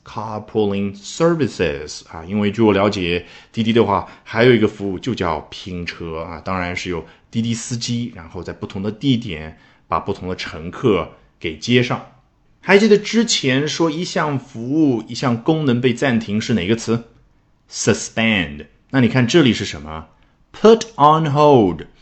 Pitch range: 90-140 Hz